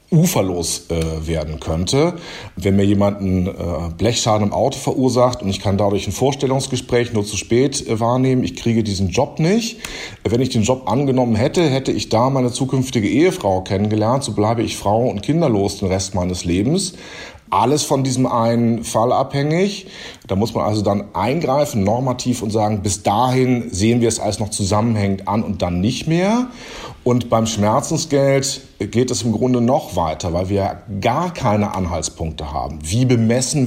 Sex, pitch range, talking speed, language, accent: male, 105-135 Hz, 175 wpm, German, German